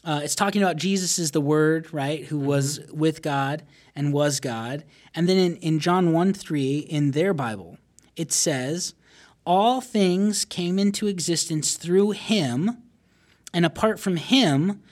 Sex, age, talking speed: male, 30-49, 155 wpm